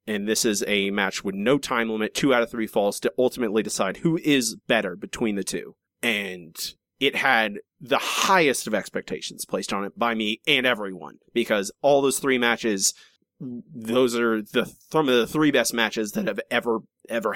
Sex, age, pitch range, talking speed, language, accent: male, 30-49, 110-130 Hz, 195 wpm, English, American